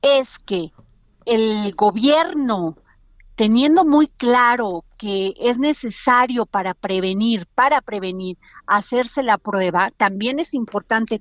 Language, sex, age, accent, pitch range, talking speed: Spanish, female, 40-59, Mexican, 210-280 Hz, 105 wpm